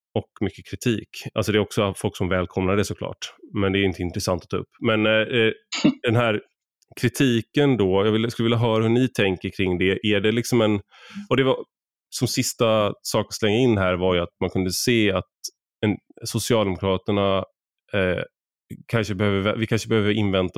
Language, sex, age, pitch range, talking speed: Swedish, male, 20-39, 95-110 Hz, 165 wpm